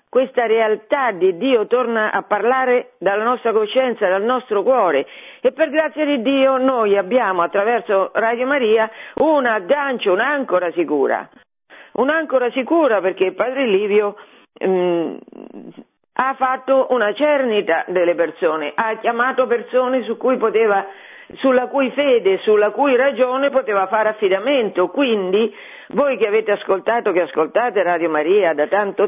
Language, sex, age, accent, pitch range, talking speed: Italian, female, 50-69, native, 190-260 Hz, 135 wpm